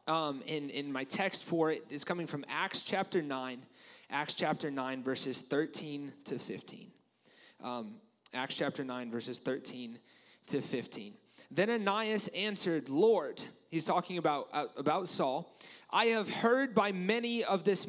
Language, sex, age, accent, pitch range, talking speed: English, male, 30-49, American, 180-230 Hz, 150 wpm